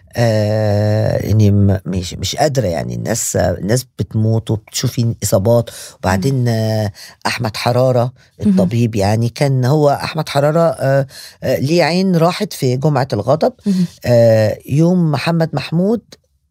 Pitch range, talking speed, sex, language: 115-155 Hz, 115 wpm, female, Arabic